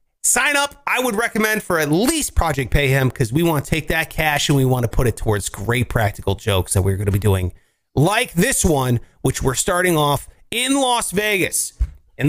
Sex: male